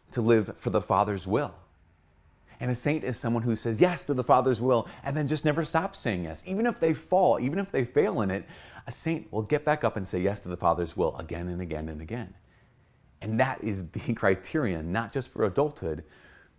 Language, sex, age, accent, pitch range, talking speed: English, male, 30-49, American, 90-130 Hz, 225 wpm